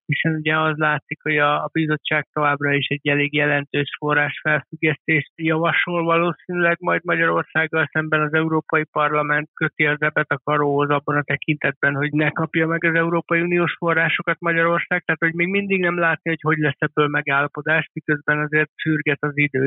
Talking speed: 165 wpm